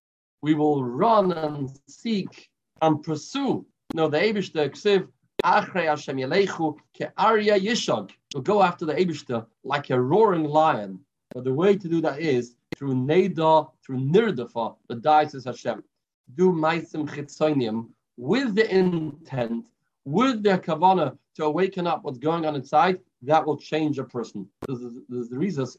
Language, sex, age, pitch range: English, male, 40-59, 130-170 Hz